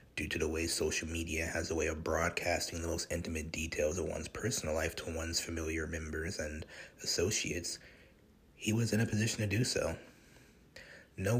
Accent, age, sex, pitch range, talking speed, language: American, 30-49, male, 80-95 Hz, 180 wpm, English